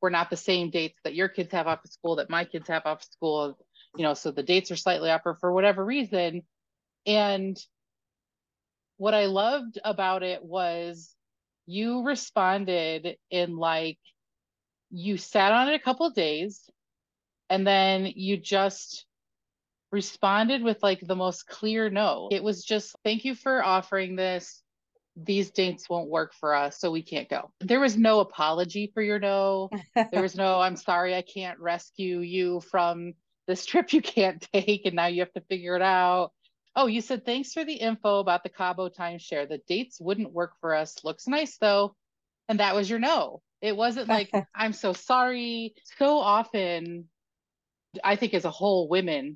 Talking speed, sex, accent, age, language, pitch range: 175 wpm, female, American, 30-49, English, 170-210 Hz